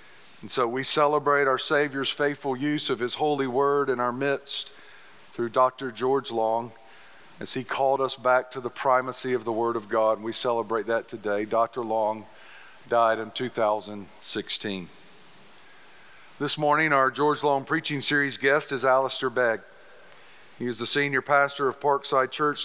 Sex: male